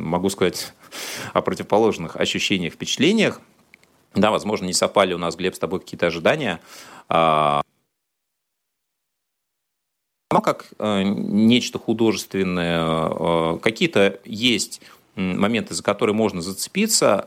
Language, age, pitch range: Russian, 30-49, 90-120 Hz